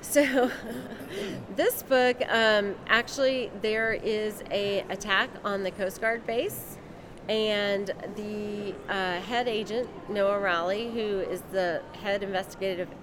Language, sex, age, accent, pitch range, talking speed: English, female, 30-49, American, 185-225 Hz, 120 wpm